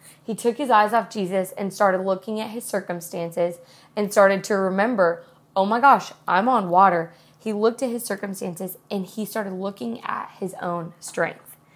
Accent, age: American, 20-39